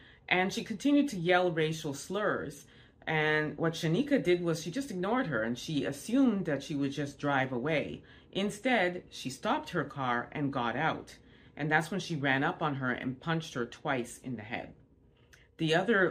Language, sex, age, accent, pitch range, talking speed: English, female, 30-49, American, 135-175 Hz, 185 wpm